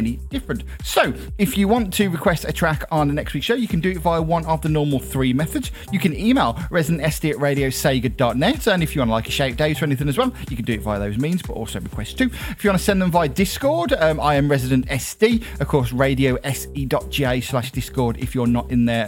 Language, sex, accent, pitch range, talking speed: English, male, British, 125-165 Hz, 250 wpm